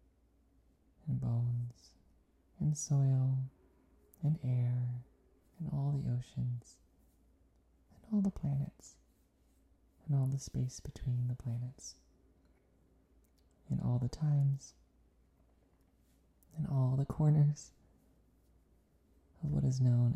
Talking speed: 100 wpm